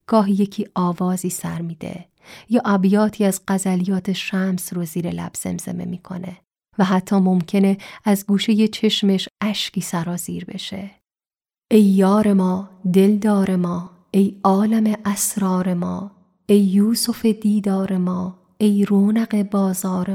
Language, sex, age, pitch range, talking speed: Persian, female, 30-49, 185-205 Hz, 120 wpm